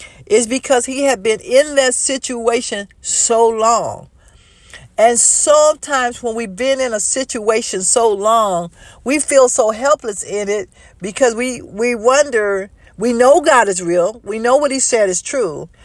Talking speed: 160 wpm